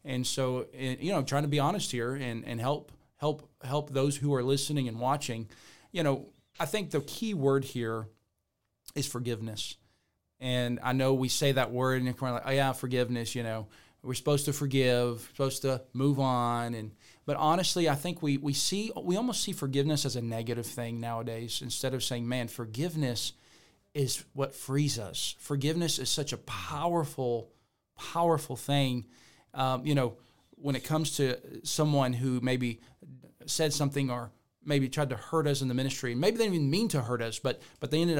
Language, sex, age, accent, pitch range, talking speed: English, male, 40-59, American, 120-145 Hz, 185 wpm